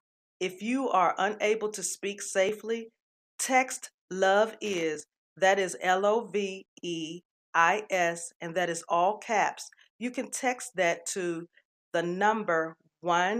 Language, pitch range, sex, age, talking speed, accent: English, 175-220 Hz, female, 40-59, 115 wpm, American